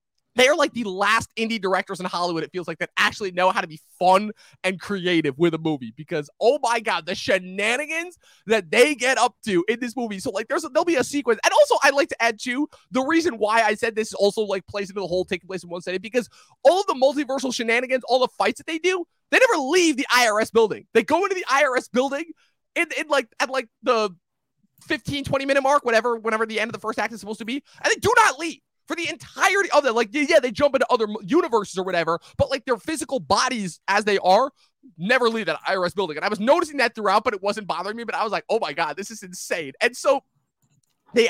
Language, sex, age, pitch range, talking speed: English, male, 20-39, 185-255 Hz, 250 wpm